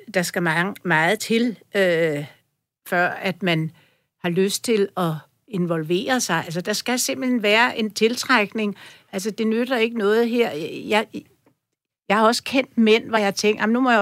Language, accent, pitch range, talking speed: Danish, native, 180-230 Hz, 170 wpm